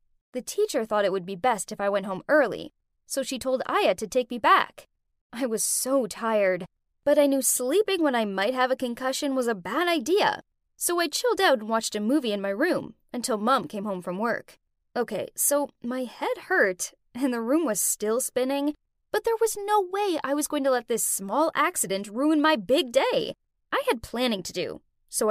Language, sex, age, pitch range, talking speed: English, female, 10-29, 225-325 Hz, 210 wpm